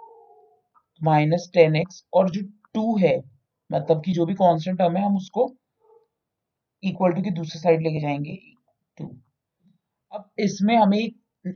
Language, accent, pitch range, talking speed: Hindi, native, 150-190 Hz, 135 wpm